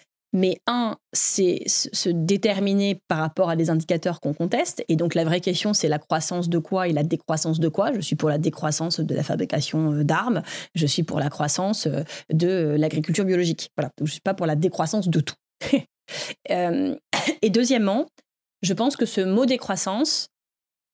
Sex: female